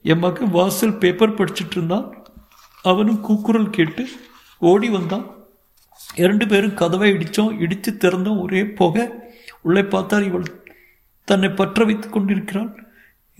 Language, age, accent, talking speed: Tamil, 60-79, native, 115 wpm